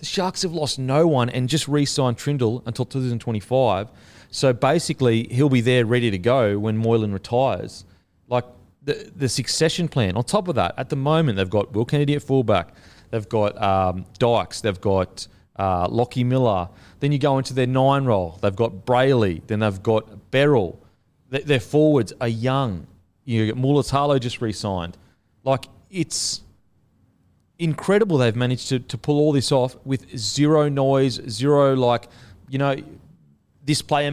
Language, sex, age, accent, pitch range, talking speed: English, male, 30-49, Australian, 110-140 Hz, 170 wpm